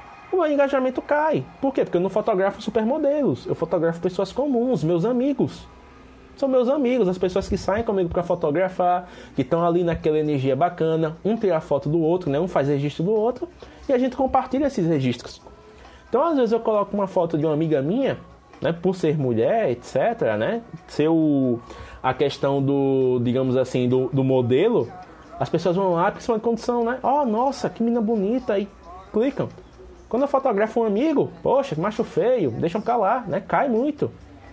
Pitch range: 160-240 Hz